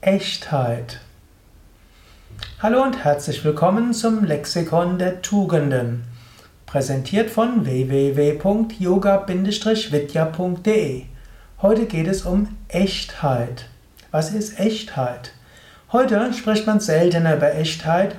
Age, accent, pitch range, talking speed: 60-79, German, 145-185 Hz, 85 wpm